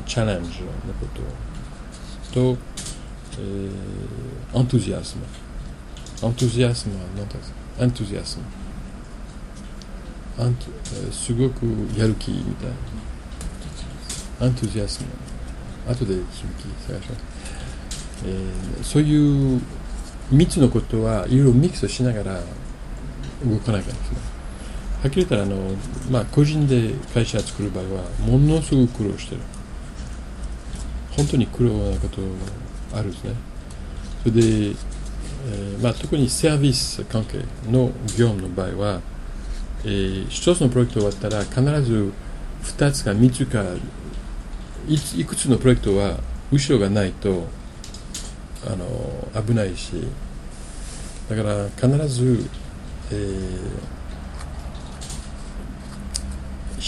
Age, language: 50-69, Japanese